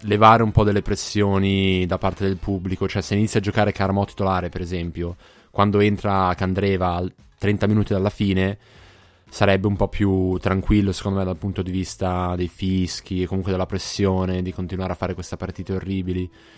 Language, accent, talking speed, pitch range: Italian, native, 175 wpm, 90-110 Hz